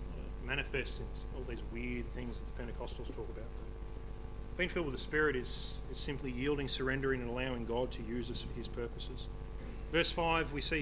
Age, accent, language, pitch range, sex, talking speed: 30-49, Australian, English, 115-150 Hz, male, 190 wpm